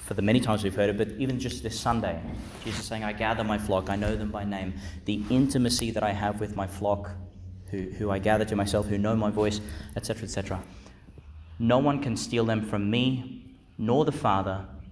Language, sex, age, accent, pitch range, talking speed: English, male, 30-49, Australian, 95-120 Hz, 215 wpm